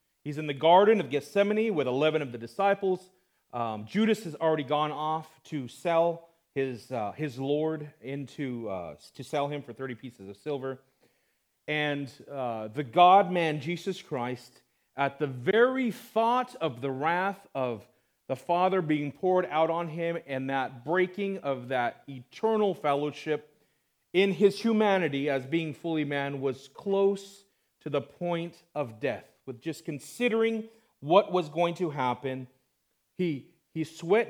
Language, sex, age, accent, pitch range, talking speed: English, male, 40-59, American, 135-185 Hz, 150 wpm